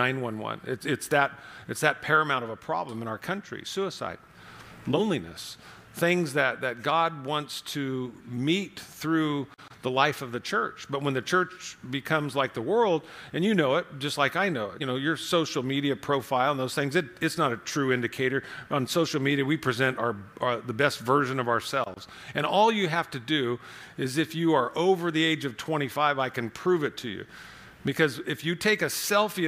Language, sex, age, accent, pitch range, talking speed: English, male, 50-69, American, 130-165 Hz, 200 wpm